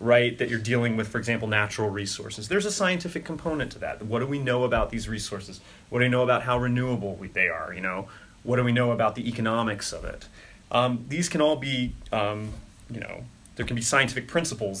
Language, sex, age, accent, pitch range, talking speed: English, male, 30-49, American, 100-125 Hz, 225 wpm